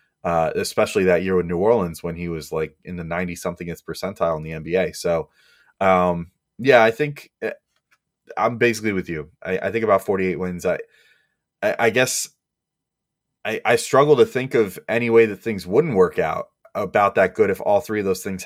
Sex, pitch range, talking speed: male, 90-110 Hz, 200 wpm